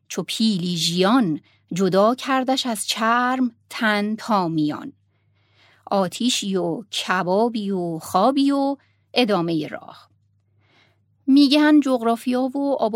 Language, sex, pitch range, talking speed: Persian, female, 180-245 Hz, 105 wpm